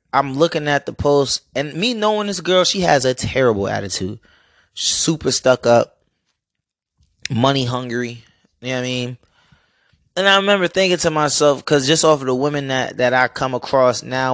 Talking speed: 180 wpm